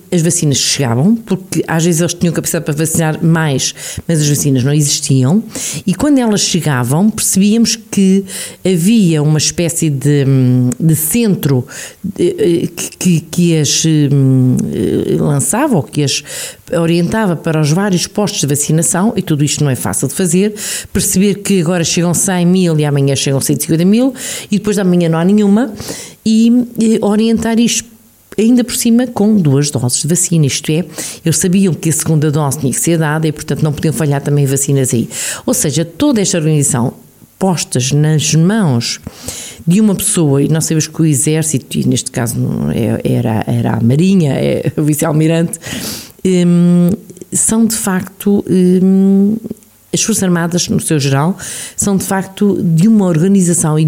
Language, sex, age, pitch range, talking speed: Portuguese, female, 50-69, 150-195 Hz, 160 wpm